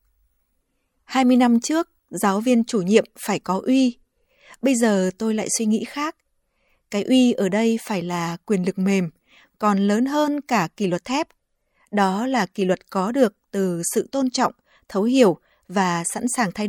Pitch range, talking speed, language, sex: 195-245 Hz, 175 wpm, Vietnamese, female